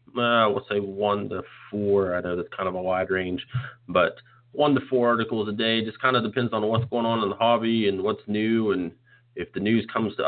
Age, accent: 30-49, American